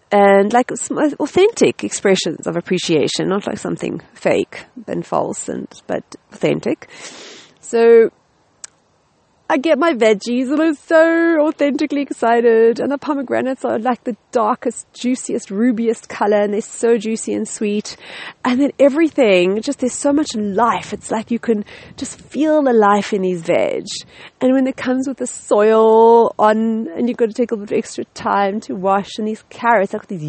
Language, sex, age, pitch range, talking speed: English, female, 30-49, 180-250 Hz, 170 wpm